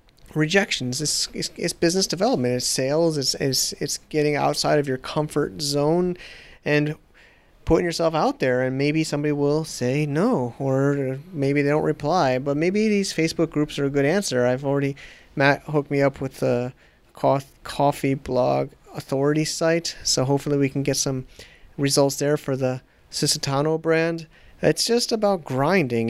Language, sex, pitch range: English, male, 130-155 Hz